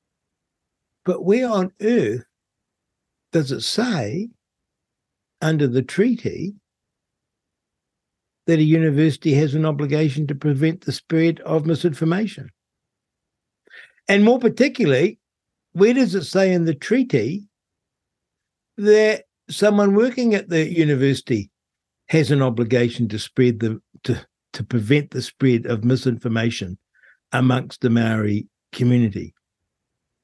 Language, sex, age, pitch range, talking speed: English, male, 60-79, 120-185 Hz, 110 wpm